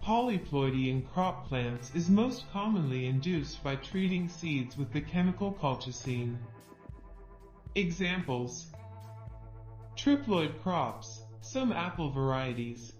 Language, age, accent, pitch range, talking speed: English, 40-59, American, 125-190 Hz, 95 wpm